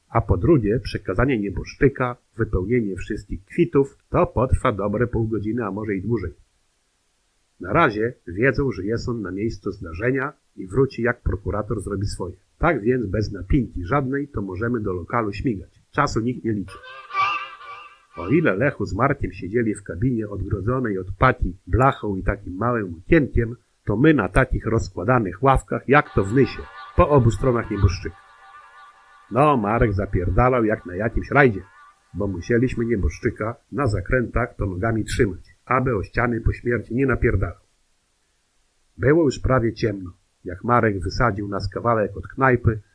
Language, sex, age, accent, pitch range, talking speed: Polish, male, 50-69, native, 100-130 Hz, 150 wpm